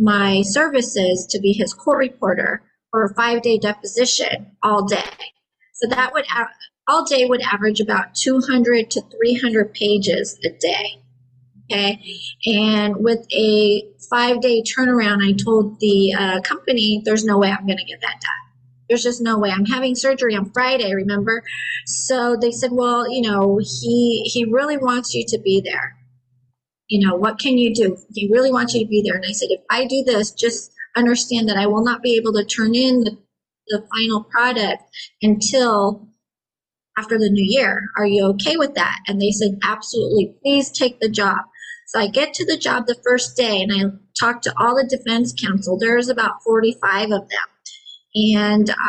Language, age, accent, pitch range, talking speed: English, 30-49, American, 205-245 Hz, 185 wpm